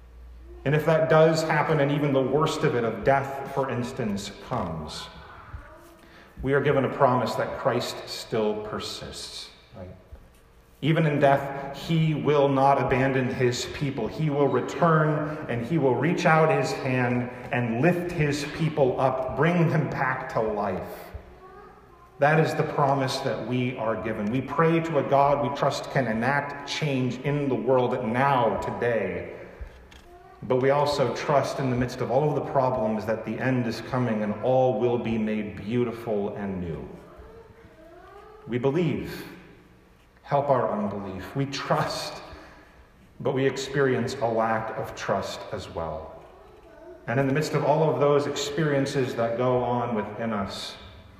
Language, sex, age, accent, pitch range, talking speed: English, male, 40-59, American, 110-145 Hz, 155 wpm